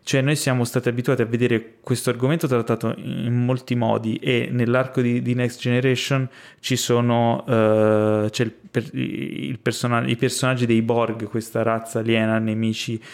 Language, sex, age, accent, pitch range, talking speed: Italian, male, 20-39, native, 115-125 Hz, 155 wpm